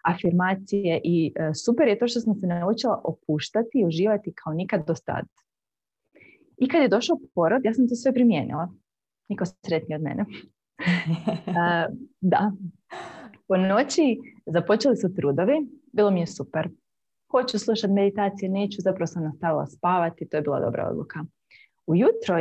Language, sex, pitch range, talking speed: Croatian, female, 165-220 Hz, 145 wpm